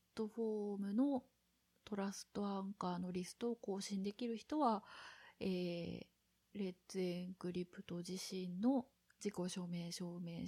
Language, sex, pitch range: Japanese, female, 175-210 Hz